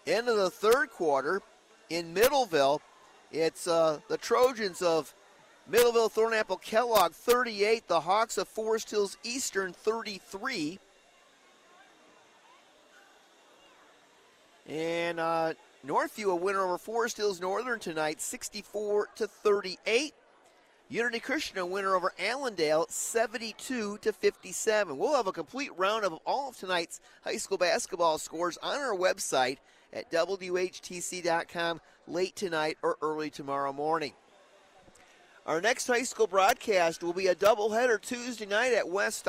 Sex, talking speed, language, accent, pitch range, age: male, 125 wpm, English, American, 175-230 Hz, 40-59